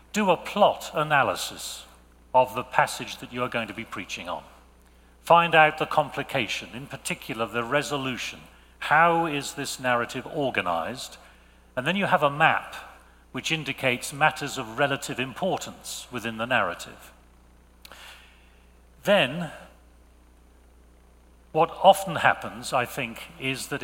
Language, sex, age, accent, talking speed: English, male, 40-59, British, 130 wpm